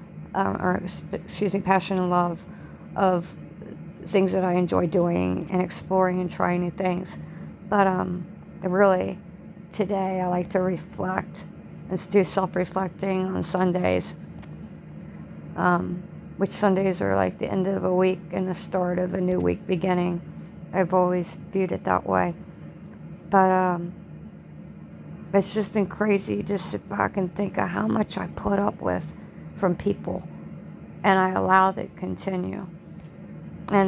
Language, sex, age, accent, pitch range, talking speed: English, female, 50-69, American, 175-190 Hz, 150 wpm